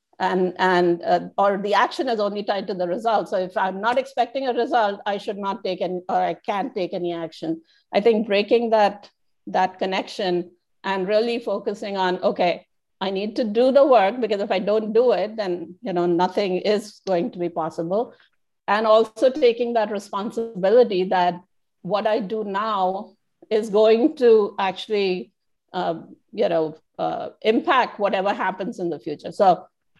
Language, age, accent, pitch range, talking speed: English, 50-69, Indian, 185-230 Hz, 175 wpm